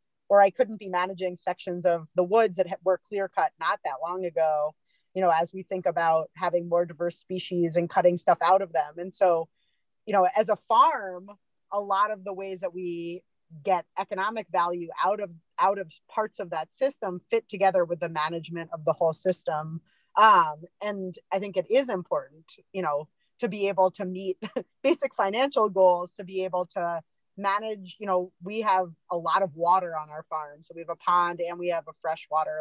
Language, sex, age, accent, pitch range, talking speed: English, female, 30-49, American, 170-200 Hz, 200 wpm